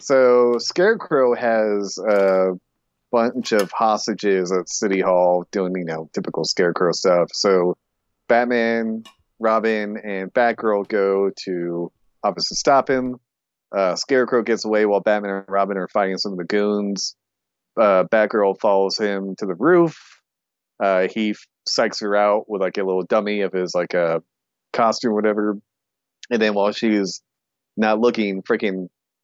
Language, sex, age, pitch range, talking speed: English, male, 30-49, 95-110 Hz, 150 wpm